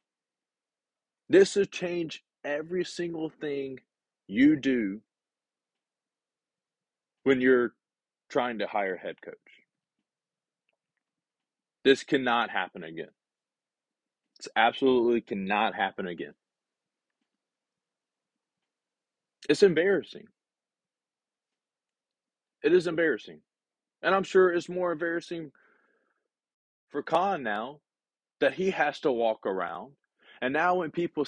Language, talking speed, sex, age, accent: English, 95 wpm, male, 30-49, American